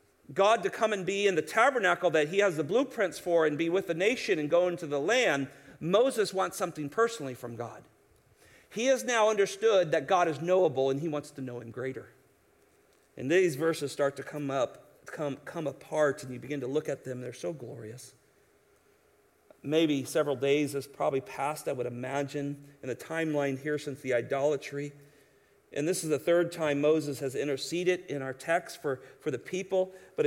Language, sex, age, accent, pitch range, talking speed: English, male, 40-59, American, 135-170 Hz, 195 wpm